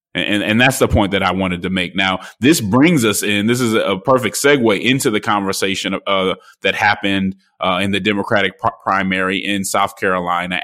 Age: 20-39